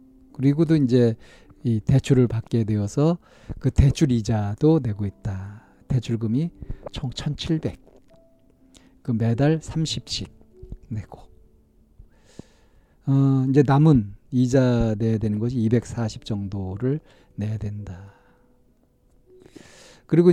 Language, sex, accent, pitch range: Korean, male, native, 110-140 Hz